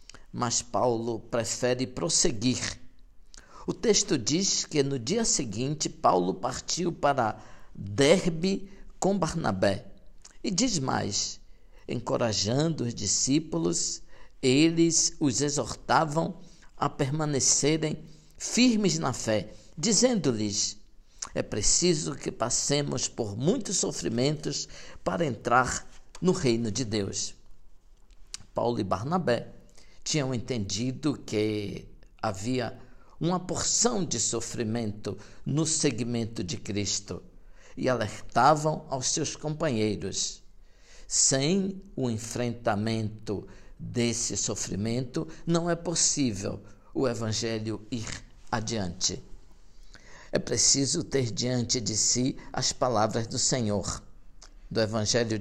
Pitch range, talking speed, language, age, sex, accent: 105-155 Hz, 95 wpm, Portuguese, 60-79, male, Brazilian